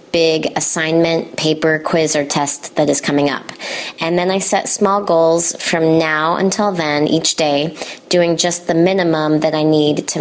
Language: English